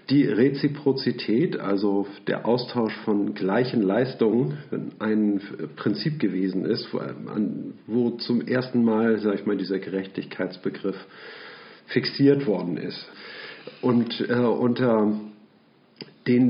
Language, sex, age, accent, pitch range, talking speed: German, male, 50-69, German, 105-125 Hz, 100 wpm